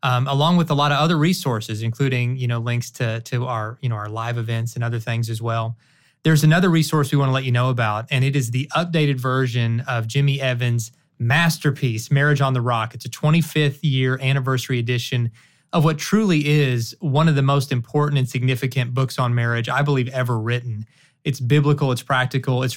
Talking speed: 205 wpm